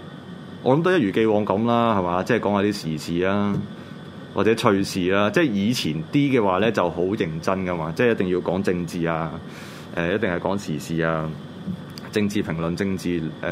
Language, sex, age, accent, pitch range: Chinese, male, 20-39, native, 90-110 Hz